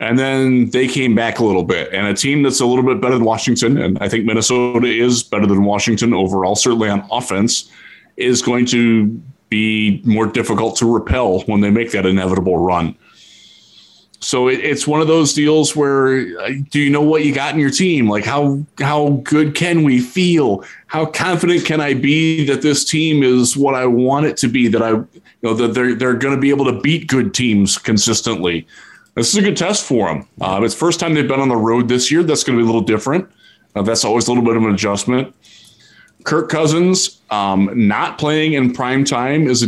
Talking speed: 215 wpm